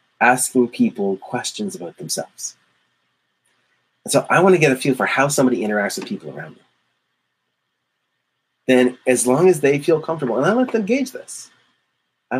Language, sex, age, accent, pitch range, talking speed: English, male, 30-49, American, 120-150 Hz, 170 wpm